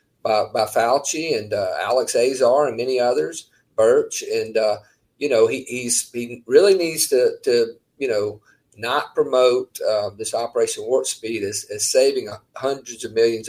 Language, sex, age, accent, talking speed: English, male, 40-59, American, 165 wpm